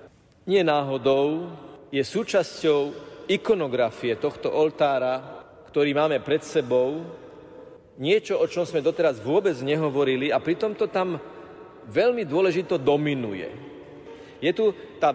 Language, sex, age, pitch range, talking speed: Slovak, male, 50-69, 145-180 Hz, 105 wpm